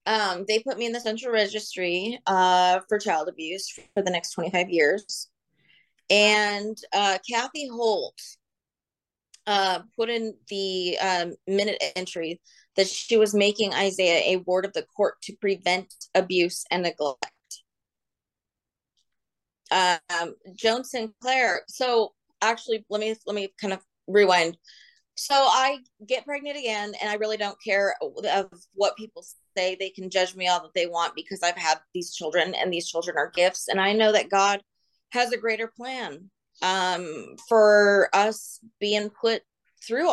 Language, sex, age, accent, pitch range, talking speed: English, female, 30-49, American, 185-225 Hz, 155 wpm